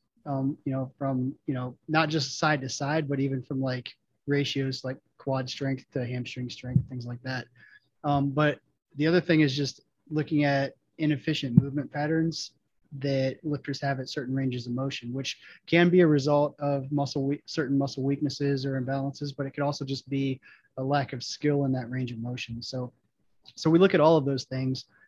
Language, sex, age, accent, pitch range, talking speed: English, male, 20-39, American, 130-145 Hz, 195 wpm